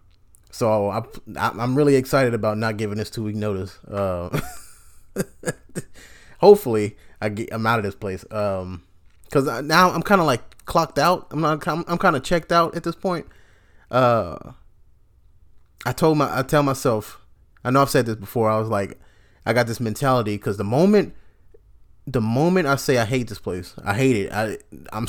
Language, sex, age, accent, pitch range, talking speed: English, male, 20-39, American, 100-135 Hz, 185 wpm